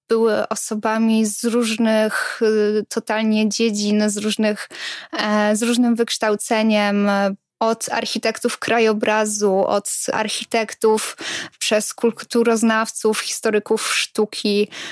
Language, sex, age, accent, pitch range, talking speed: Polish, female, 20-39, native, 210-235 Hz, 75 wpm